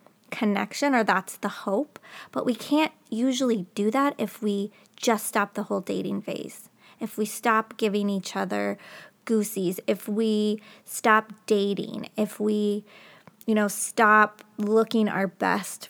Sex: female